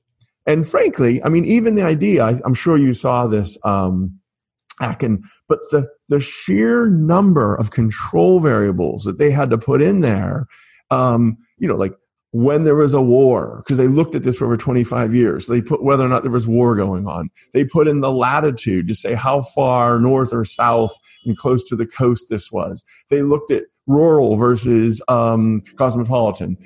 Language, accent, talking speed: English, American, 190 wpm